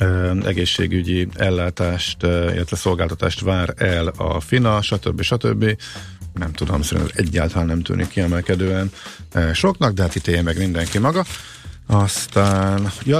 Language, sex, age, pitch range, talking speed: Hungarian, male, 50-69, 85-110 Hz, 120 wpm